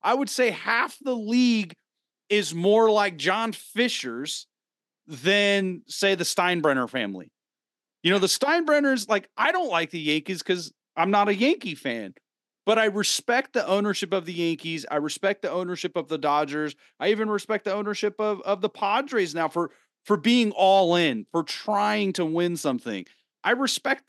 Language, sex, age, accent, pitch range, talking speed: English, male, 40-59, American, 160-220 Hz, 170 wpm